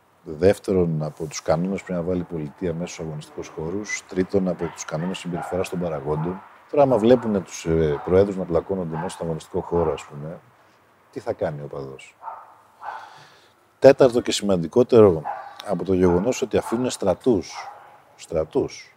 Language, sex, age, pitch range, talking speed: Greek, male, 50-69, 85-110 Hz, 155 wpm